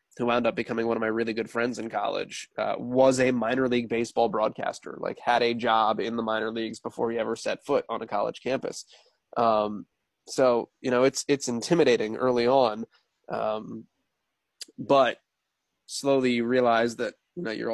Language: English